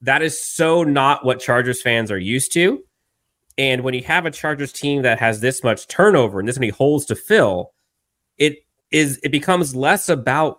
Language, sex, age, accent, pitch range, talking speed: English, male, 30-49, American, 110-135 Hz, 195 wpm